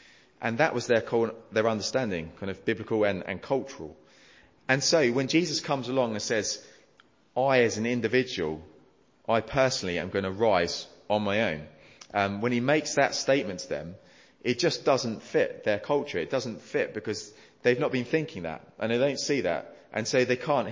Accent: British